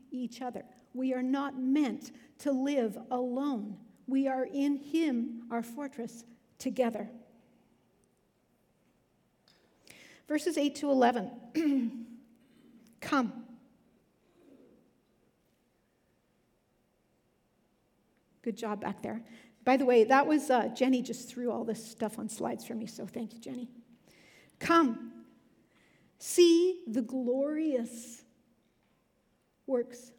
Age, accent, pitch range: 50-69, American, 230-270 Hz